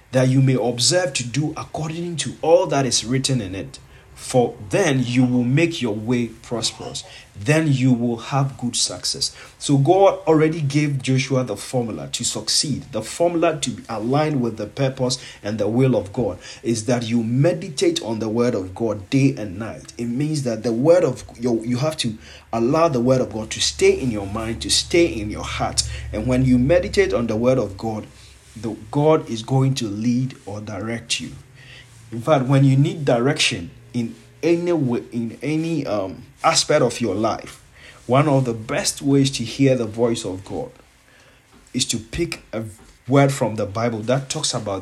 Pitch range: 115-140 Hz